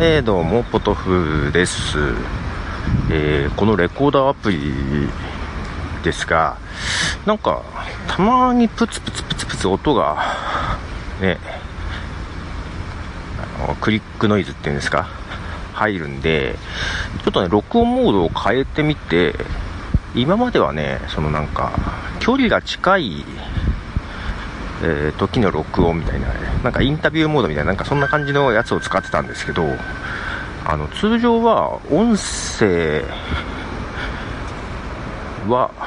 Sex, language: male, Japanese